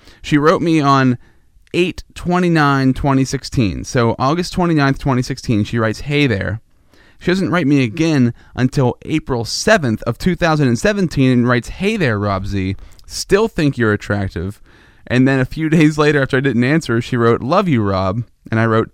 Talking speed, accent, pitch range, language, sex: 160 wpm, American, 105-155 Hz, English, male